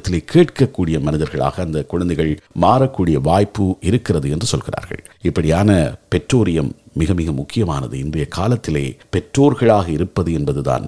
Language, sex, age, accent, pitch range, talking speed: Tamil, male, 50-69, native, 80-115 Hz, 105 wpm